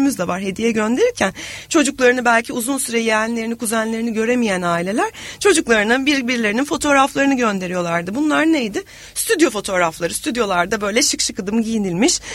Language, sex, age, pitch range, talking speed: Turkish, female, 40-59, 205-275 Hz, 115 wpm